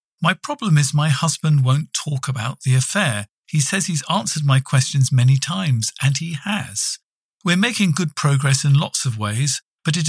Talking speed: 185 wpm